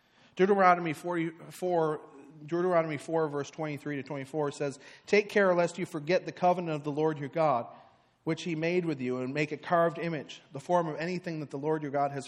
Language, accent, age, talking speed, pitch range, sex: English, American, 40-59, 190 wpm, 145-180 Hz, male